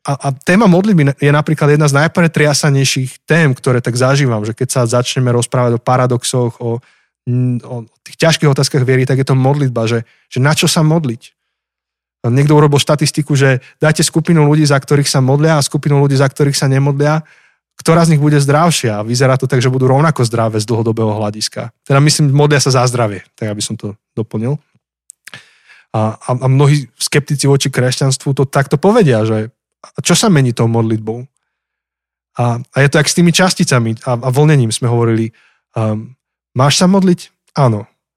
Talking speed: 180 wpm